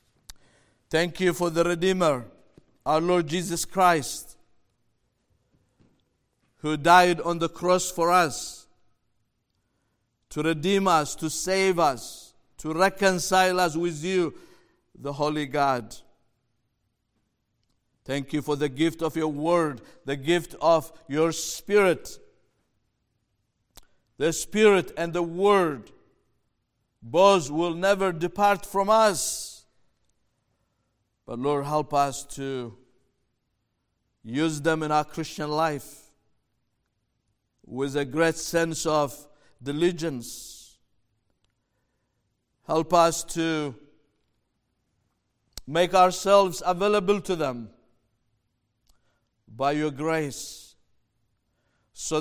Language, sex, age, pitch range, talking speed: English, male, 50-69, 115-175 Hz, 95 wpm